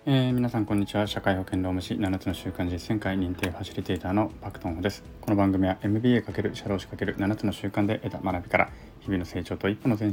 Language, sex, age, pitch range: Japanese, male, 20-39, 90-120 Hz